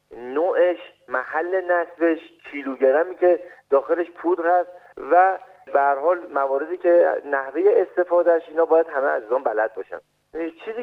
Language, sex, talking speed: Persian, male, 125 wpm